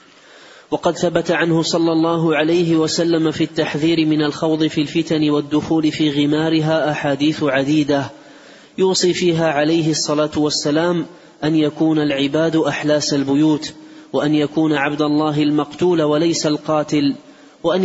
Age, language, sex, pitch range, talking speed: 30-49, Arabic, male, 150-160 Hz, 120 wpm